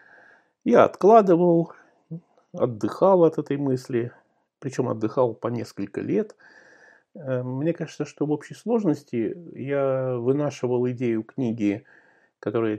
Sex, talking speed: male, 105 wpm